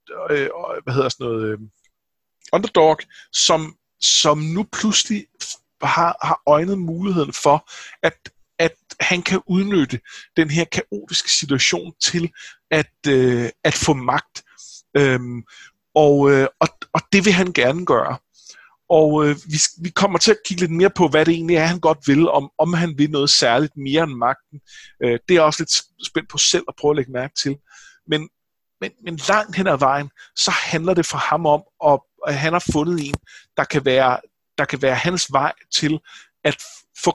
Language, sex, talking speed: Danish, male, 170 wpm